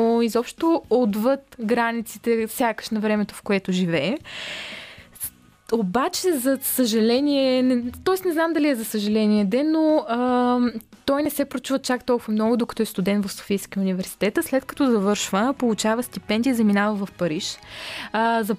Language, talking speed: Bulgarian, 150 wpm